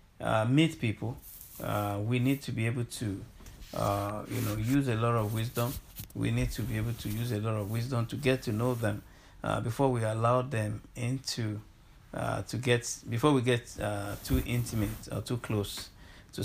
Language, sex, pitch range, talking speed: English, male, 105-125 Hz, 195 wpm